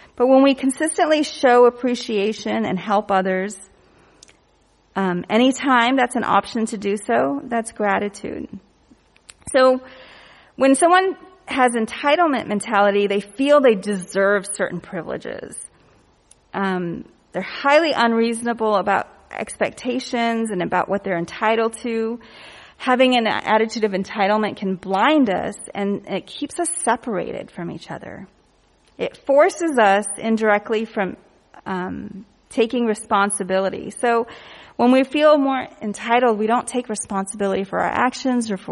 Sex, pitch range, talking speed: female, 200-250 Hz, 125 wpm